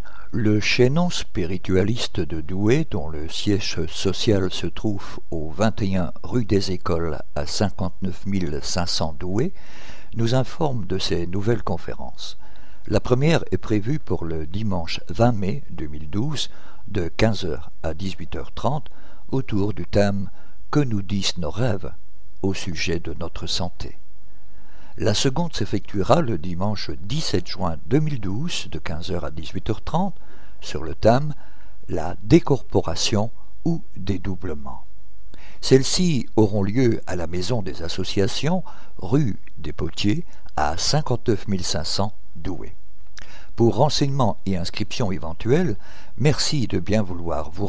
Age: 60-79